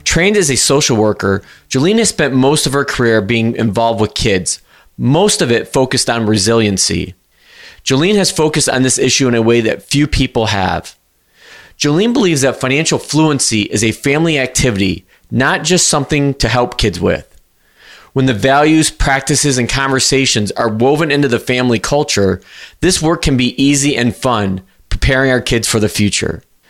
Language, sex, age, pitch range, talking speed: English, male, 30-49, 115-145 Hz, 170 wpm